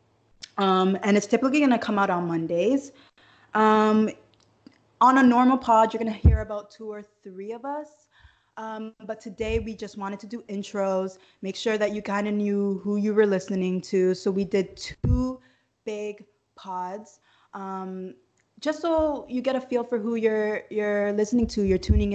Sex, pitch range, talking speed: female, 195-225 Hz, 180 wpm